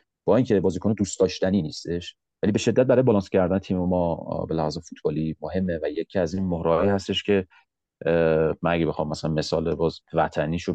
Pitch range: 85-110 Hz